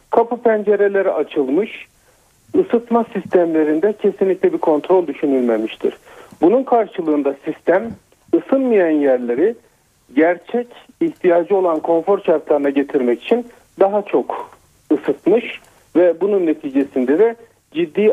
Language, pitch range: Turkish, 155-230 Hz